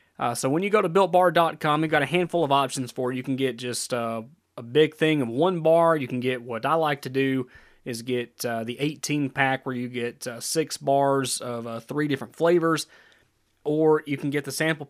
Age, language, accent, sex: 30-49, English, American, male